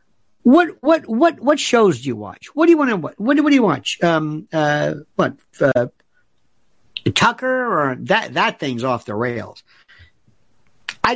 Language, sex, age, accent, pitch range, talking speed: English, male, 60-79, American, 195-295 Hz, 170 wpm